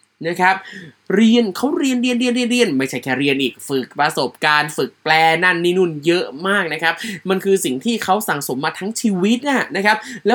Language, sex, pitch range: Thai, male, 150-220 Hz